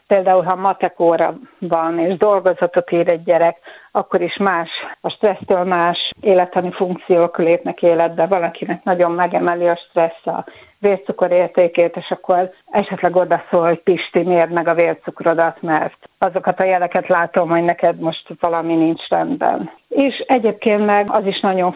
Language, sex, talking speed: Hungarian, female, 150 wpm